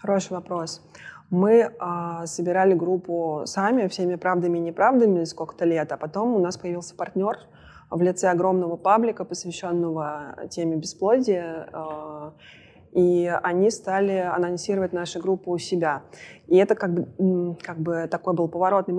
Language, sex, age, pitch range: Russian, female, 20-39, 170-195 Hz